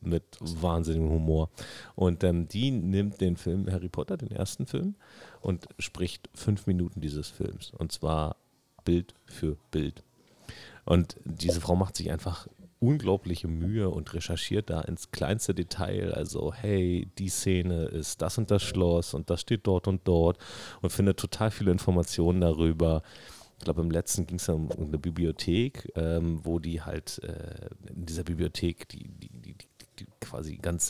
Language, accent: German, German